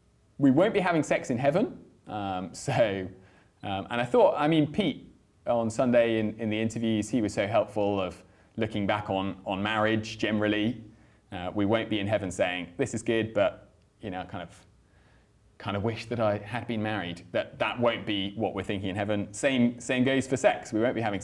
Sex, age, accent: male, 30-49, British